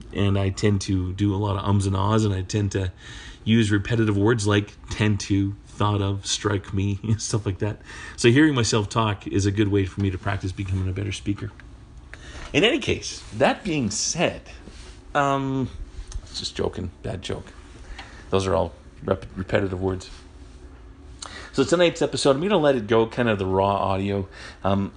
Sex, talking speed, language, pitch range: male, 185 wpm, English, 95-120 Hz